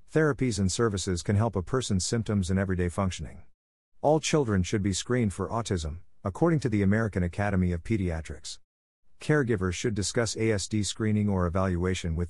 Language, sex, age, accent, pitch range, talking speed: English, male, 50-69, American, 90-115 Hz, 160 wpm